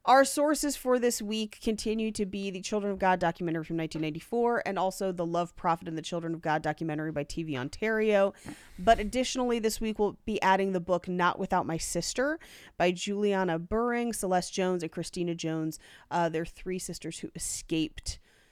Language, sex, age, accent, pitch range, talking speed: English, female, 30-49, American, 165-215 Hz, 180 wpm